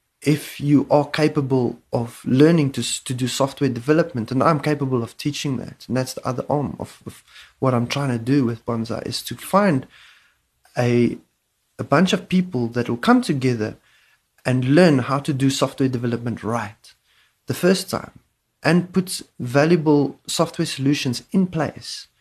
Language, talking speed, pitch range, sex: English, 165 wpm, 130-175 Hz, male